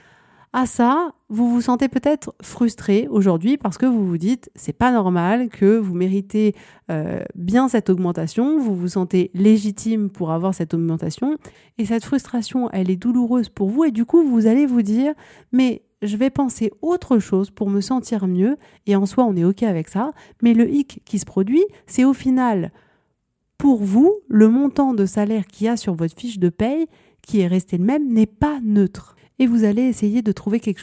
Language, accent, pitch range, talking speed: French, French, 195-245 Hz, 200 wpm